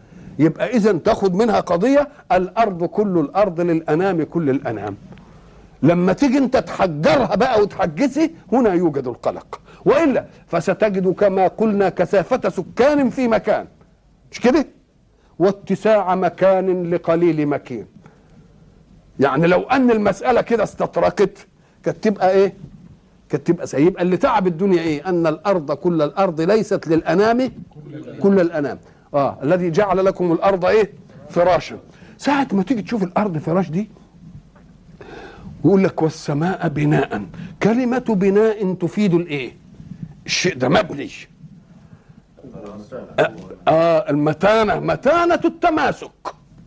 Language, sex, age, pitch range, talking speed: Arabic, male, 50-69, 165-205 Hz, 115 wpm